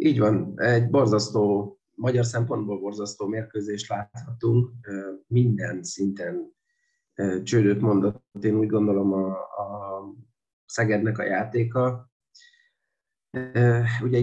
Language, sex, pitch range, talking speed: Hungarian, male, 100-120 Hz, 95 wpm